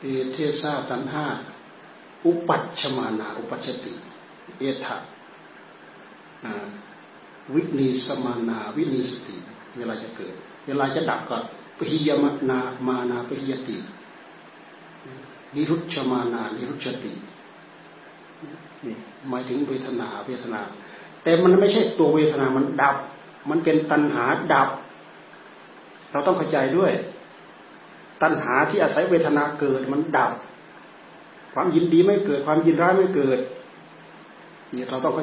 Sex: male